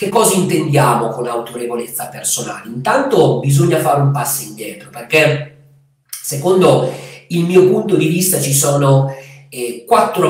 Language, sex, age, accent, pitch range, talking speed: Italian, male, 40-59, native, 135-170 Hz, 135 wpm